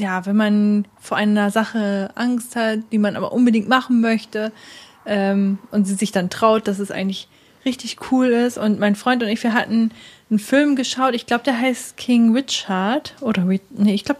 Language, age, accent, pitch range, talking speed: German, 20-39, German, 205-245 Hz, 195 wpm